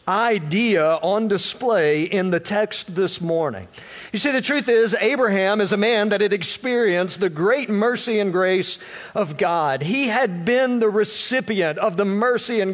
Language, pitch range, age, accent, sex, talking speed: English, 175-230 Hz, 50-69, American, male, 170 wpm